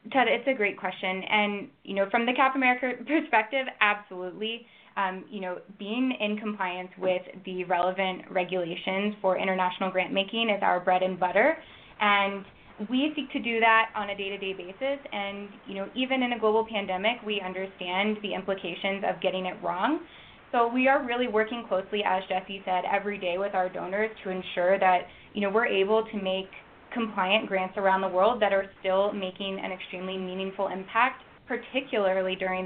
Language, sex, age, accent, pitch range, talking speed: English, female, 20-39, American, 190-225 Hz, 180 wpm